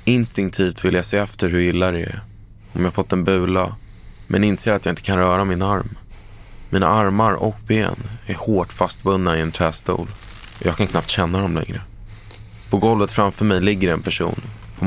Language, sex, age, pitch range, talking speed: Swedish, male, 20-39, 95-110 Hz, 200 wpm